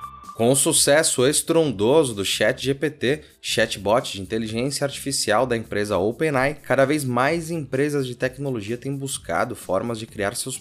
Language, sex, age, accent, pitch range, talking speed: Portuguese, male, 20-39, Brazilian, 110-140 Hz, 140 wpm